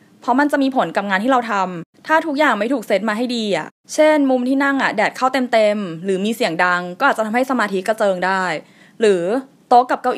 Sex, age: female, 20-39